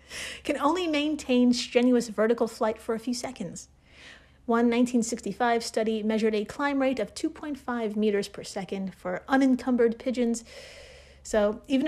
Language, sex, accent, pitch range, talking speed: English, female, American, 205-265 Hz, 135 wpm